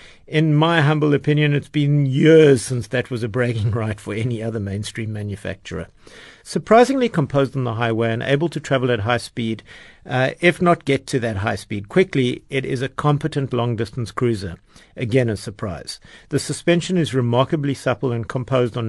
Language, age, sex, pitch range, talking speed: English, 50-69, male, 115-155 Hz, 180 wpm